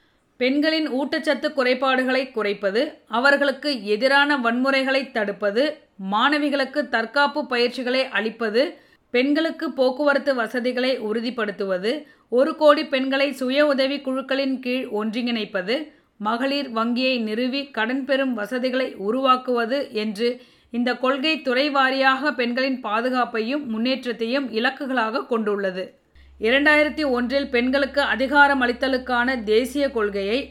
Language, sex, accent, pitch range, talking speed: Tamil, female, native, 230-275 Hz, 90 wpm